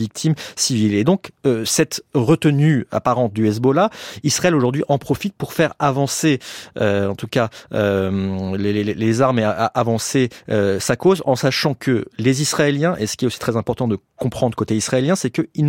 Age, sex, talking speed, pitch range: 30-49, male, 185 wpm, 110-140 Hz